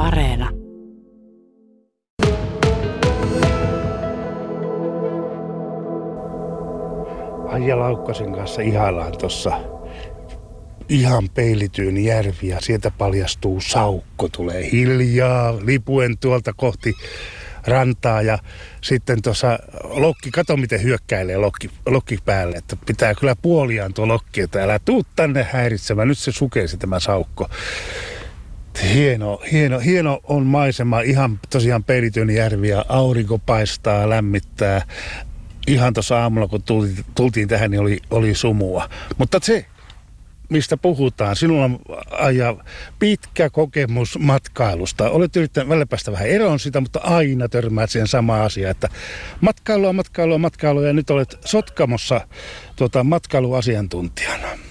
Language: Finnish